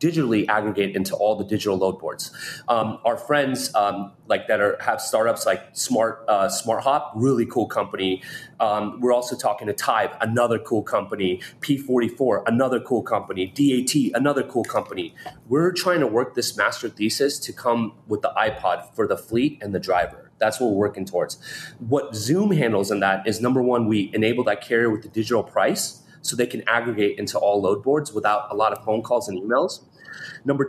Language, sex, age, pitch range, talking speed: English, male, 30-49, 105-130 Hz, 190 wpm